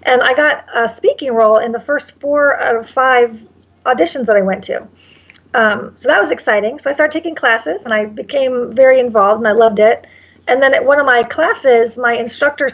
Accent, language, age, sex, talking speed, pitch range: American, English, 40-59, female, 215 wpm, 215-260 Hz